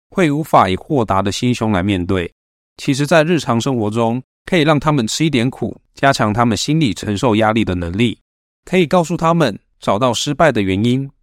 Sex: male